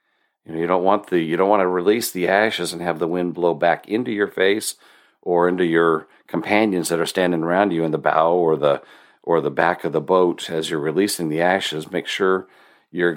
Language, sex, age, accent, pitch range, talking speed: English, male, 50-69, American, 85-95 Hz, 230 wpm